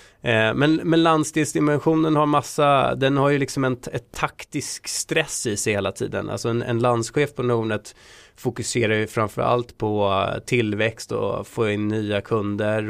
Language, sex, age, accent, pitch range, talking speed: Swedish, male, 20-39, native, 105-125 Hz, 155 wpm